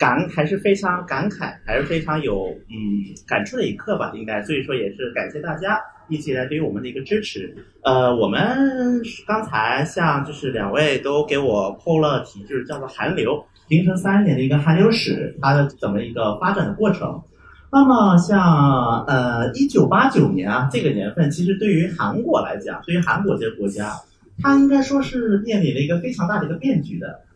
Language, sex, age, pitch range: Chinese, male, 30-49, 140-205 Hz